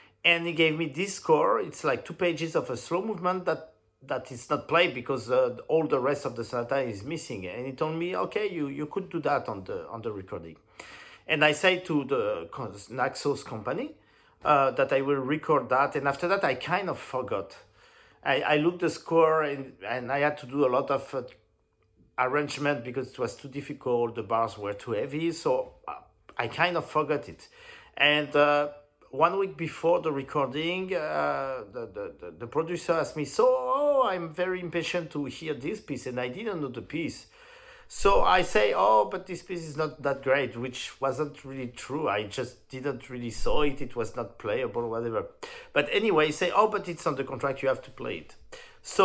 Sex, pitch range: male, 140-185 Hz